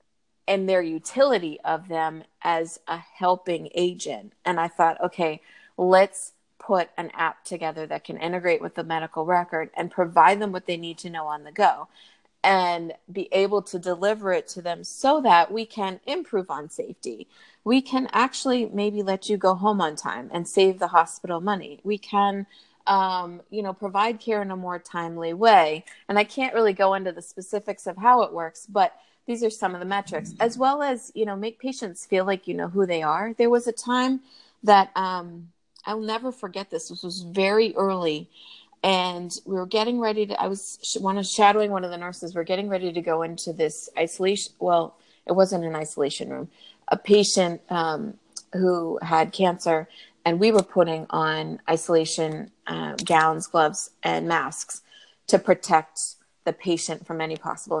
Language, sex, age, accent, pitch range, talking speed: English, female, 30-49, American, 170-210 Hz, 185 wpm